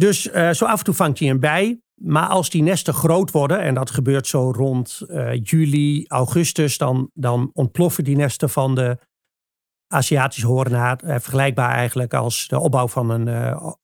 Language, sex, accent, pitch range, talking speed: Dutch, male, Dutch, 130-155 Hz, 180 wpm